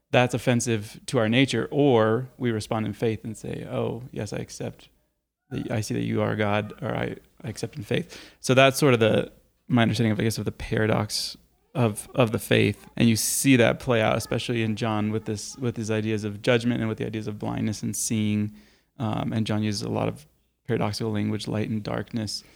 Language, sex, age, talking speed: English, male, 20-39, 215 wpm